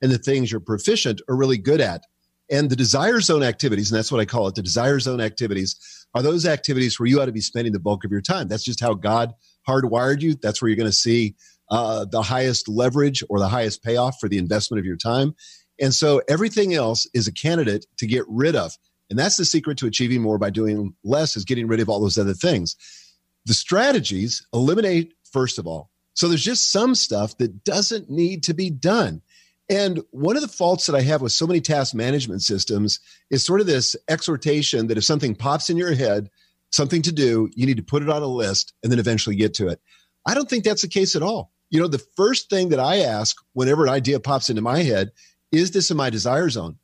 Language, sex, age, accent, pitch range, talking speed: English, male, 40-59, American, 110-160 Hz, 230 wpm